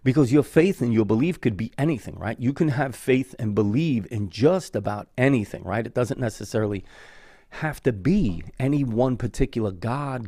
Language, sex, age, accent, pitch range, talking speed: English, male, 40-59, American, 105-135 Hz, 180 wpm